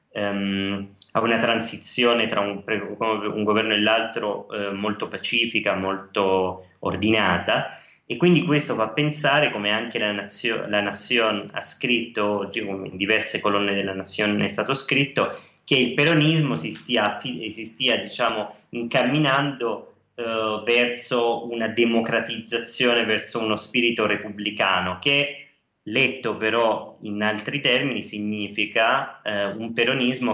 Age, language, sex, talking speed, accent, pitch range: 20-39, Italian, male, 120 wpm, native, 100-120 Hz